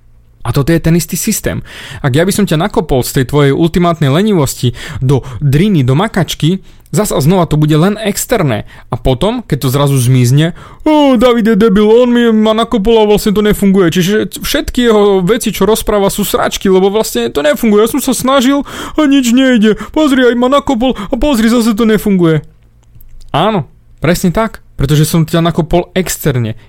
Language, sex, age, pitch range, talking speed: Slovak, male, 30-49, 140-210 Hz, 180 wpm